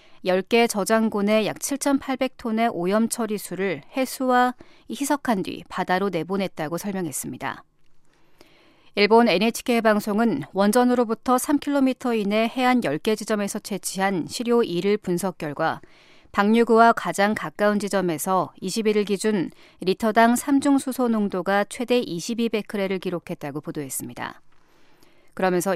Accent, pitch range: native, 185-235 Hz